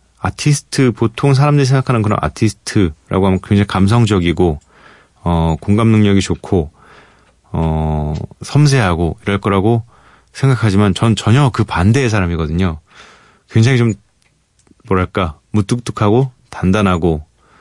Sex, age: male, 30-49